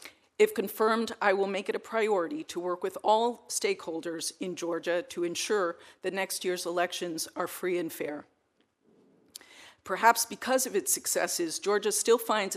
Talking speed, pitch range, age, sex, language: 160 wpm, 175-225 Hz, 50-69, female, English